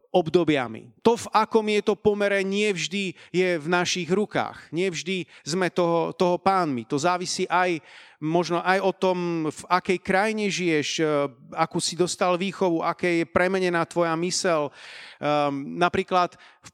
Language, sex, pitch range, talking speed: Slovak, male, 165-190 Hz, 135 wpm